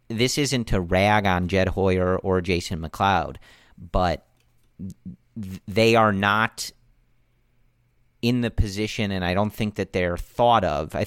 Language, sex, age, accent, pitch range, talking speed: English, male, 40-59, American, 85-105 Hz, 140 wpm